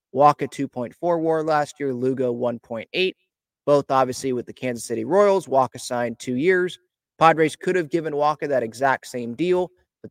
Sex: male